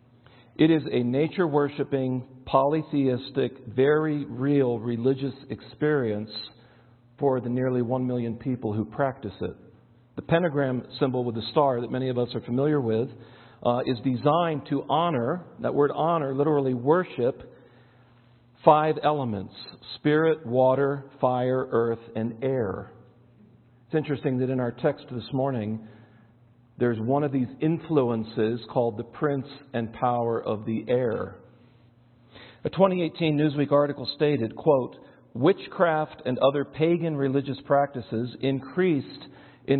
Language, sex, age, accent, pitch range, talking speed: English, male, 50-69, American, 120-145 Hz, 125 wpm